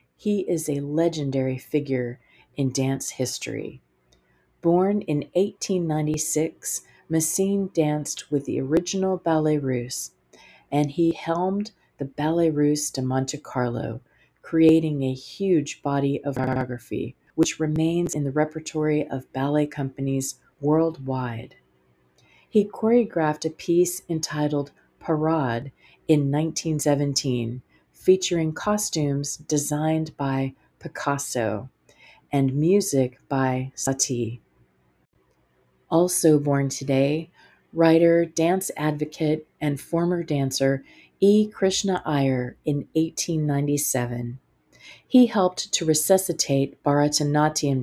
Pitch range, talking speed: 135-165 Hz, 100 wpm